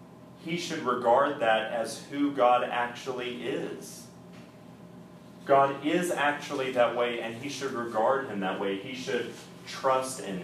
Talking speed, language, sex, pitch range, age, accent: 145 wpm, English, male, 105-135 Hz, 30-49, American